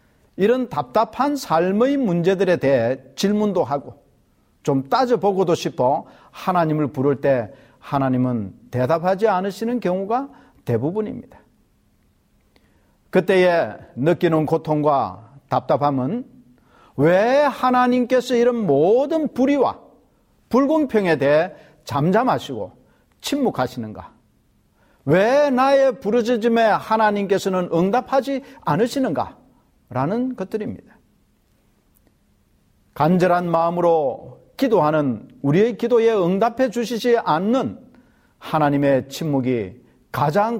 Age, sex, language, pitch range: 50-69, male, Korean, 145-245 Hz